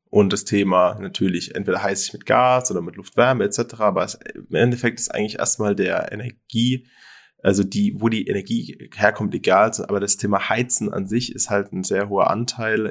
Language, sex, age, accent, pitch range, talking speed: German, male, 20-39, German, 95-120 Hz, 190 wpm